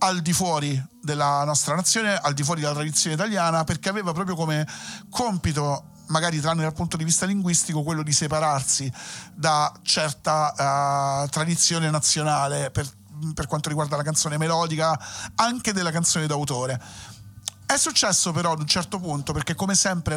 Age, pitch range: 40-59, 150-180 Hz